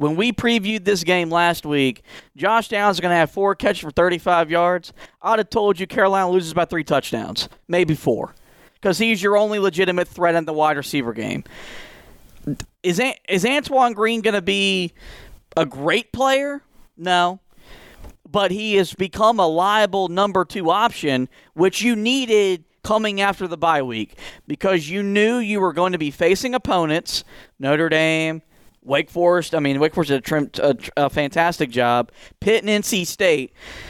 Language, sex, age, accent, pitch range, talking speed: English, male, 40-59, American, 150-205 Hz, 170 wpm